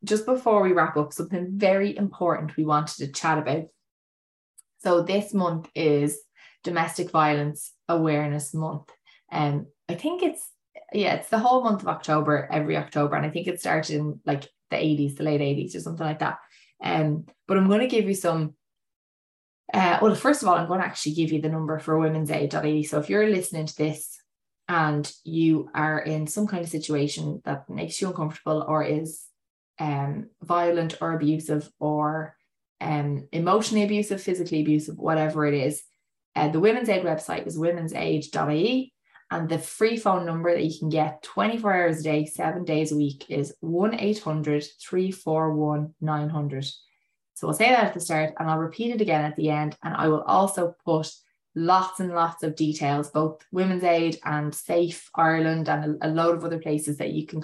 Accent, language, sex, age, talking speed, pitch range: Irish, English, female, 20-39, 185 wpm, 150-175 Hz